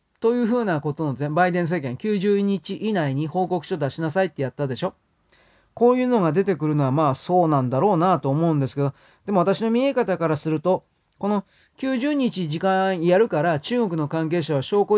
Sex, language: male, Japanese